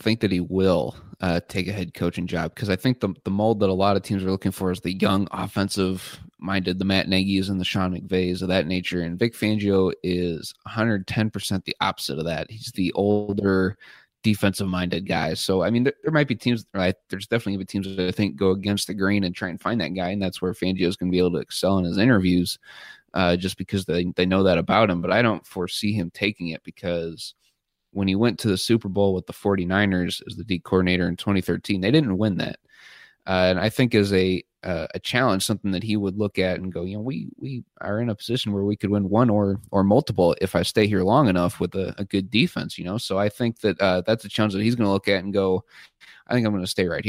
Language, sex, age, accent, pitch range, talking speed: English, male, 20-39, American, 90-105 Hz, 250 wpm